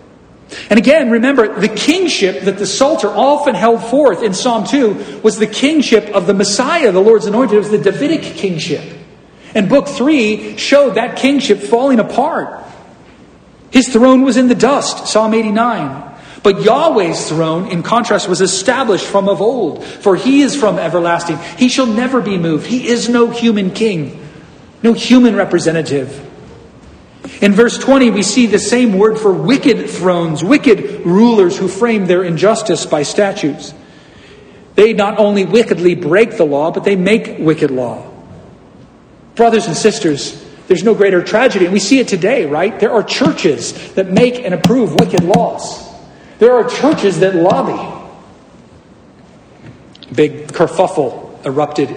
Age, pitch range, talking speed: 40-59, 175-235 Hz, 155 wpm